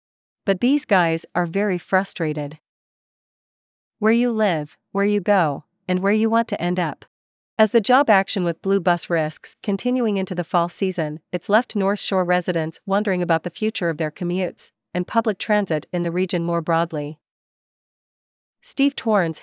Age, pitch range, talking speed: 40-59, 170-205 Hz, 165 wpm